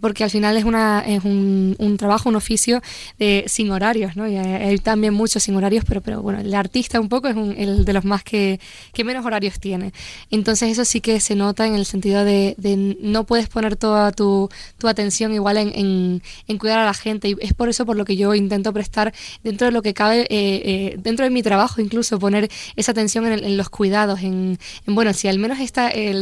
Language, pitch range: Spanish, 200-220 Hz